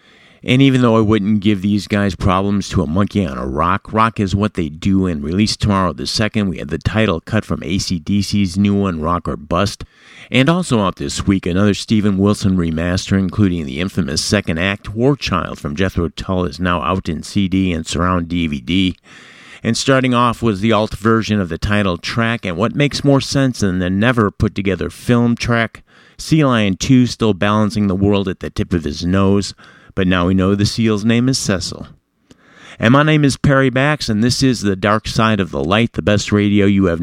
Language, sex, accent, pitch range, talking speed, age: English, male, American, 95-115 Hz, 205 wpm, 50-69